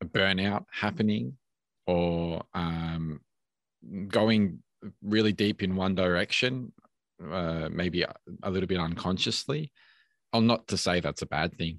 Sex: male